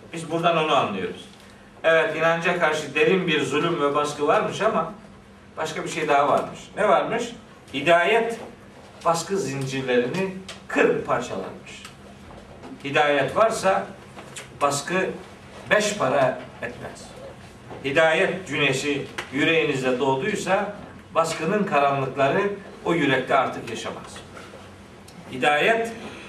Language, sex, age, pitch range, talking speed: Turkish, male, 50-69, 140-195 Hz, 100 wpm